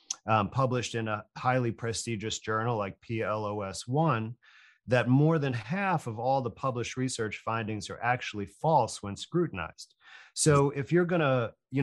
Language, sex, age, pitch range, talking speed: English, male, 40-59, 115-135 Hz, 150 wpm